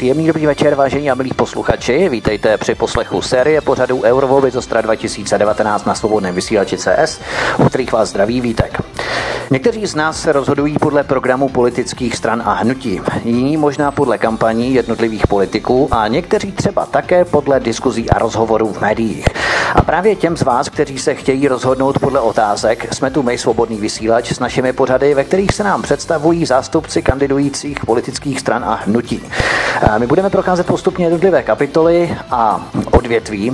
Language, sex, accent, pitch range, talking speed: Czech, male, native, 115-145 Hz, 155 wpm